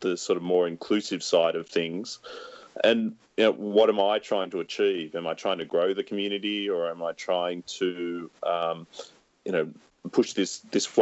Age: 30-49